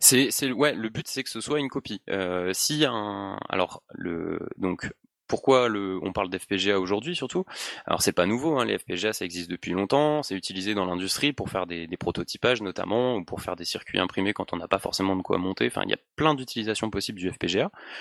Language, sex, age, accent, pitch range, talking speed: French, male, 20-39, French, 95-120 Hz, 225 wpm